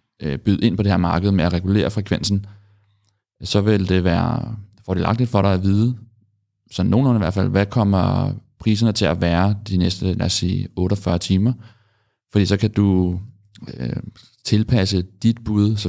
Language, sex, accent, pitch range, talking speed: Danish, male, native, 95-105 Hz, 175 wpm